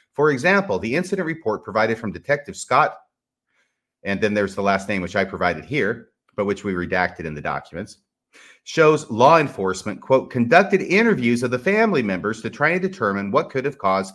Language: English